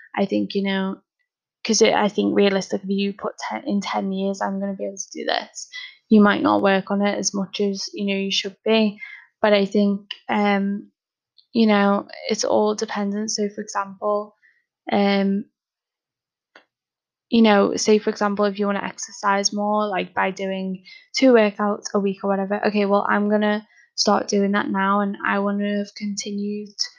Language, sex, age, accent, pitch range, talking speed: English, female, 10-29, British, 200-220 Hz, 185 wpm